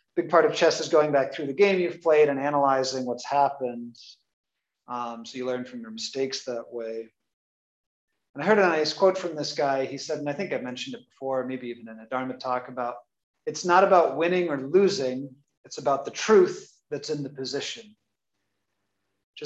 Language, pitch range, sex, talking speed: English, 125-160 Hz, male, 200 wpm